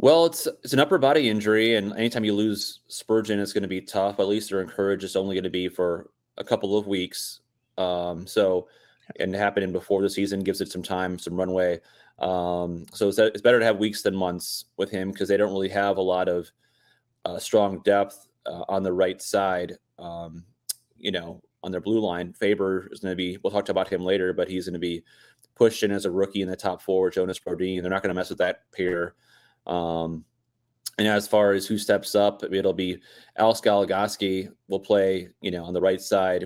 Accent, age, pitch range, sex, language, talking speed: American, 30-49, 90-100 Hz, male, English, 220 wpm